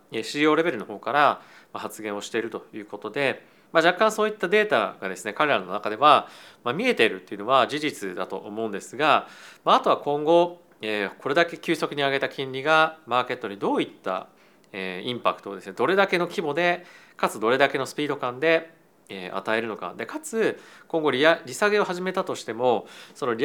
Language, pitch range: Japanese, 110-180 Hz